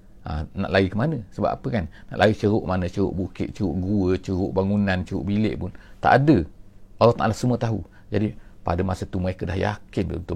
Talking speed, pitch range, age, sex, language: 205 wpm, 95-110 Hz, 50-69, male, English